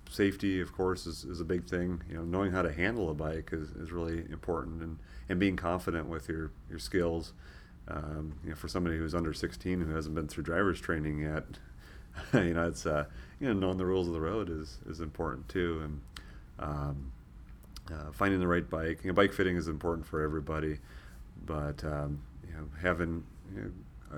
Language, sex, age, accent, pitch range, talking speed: English, male, 30-49, American, 75-90 Hz, 200 wpm